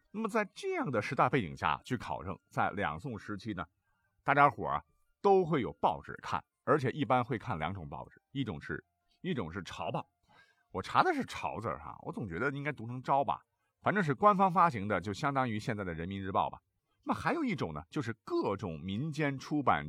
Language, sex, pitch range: Chinese, male, 105-150 Hz